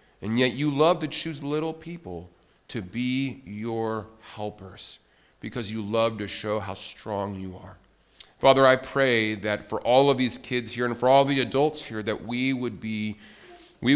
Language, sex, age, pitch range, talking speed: English, male, 40-59, 105-130 Hz, 180 wpm